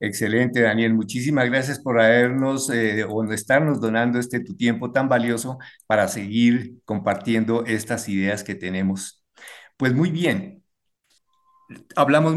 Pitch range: 105-130 Hz